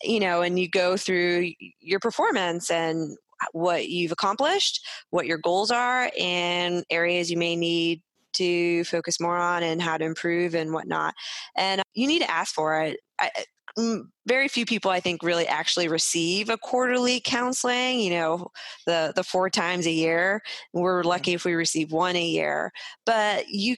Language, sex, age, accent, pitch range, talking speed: English, female, 20-39, American, 170-215 Hz, 170 wpm